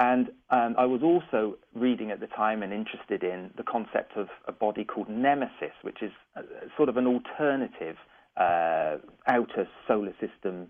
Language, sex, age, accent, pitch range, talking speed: English, male, 40-59, British, 105-140 Hz, 175 wpm